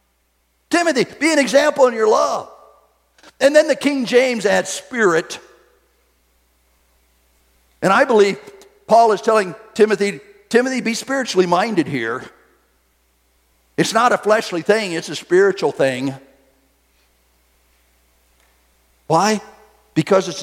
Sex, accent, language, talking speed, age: male, American, English, 110 wpm, 50-69